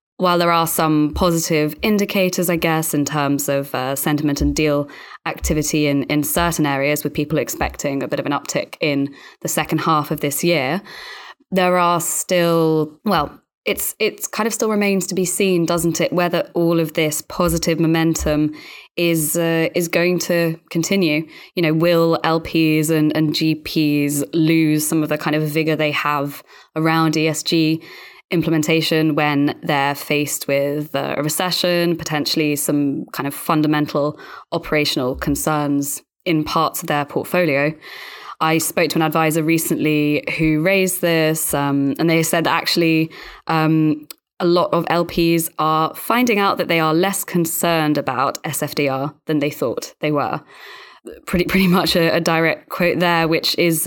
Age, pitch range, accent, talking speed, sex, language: 20-39, 150-170 Hz, British, 160 wpm, female, English